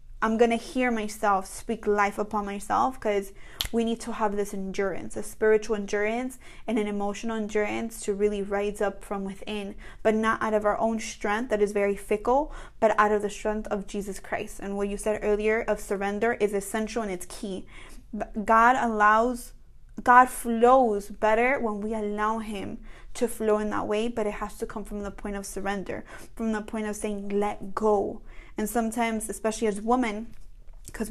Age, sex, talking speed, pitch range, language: 20-39, female, 185 wpm, 205-230 Hz, English